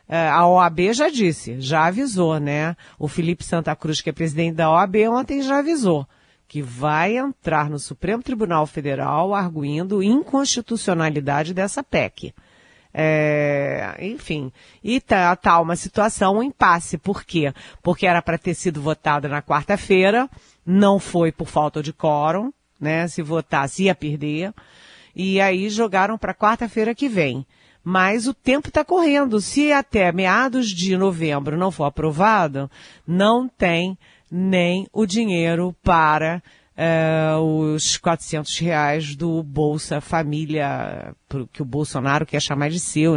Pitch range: 150-190 Hz